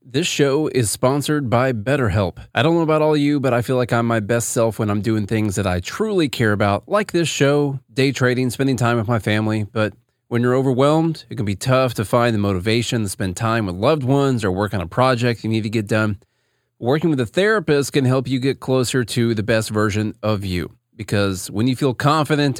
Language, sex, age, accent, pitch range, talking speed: English, male, 30-49, American, 110-140 Hz, 235 wpm